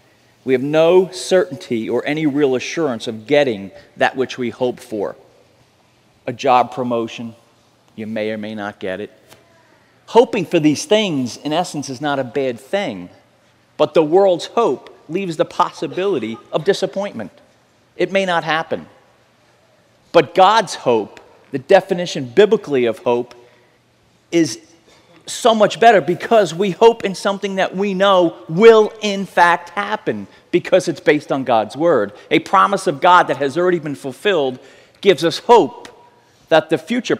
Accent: American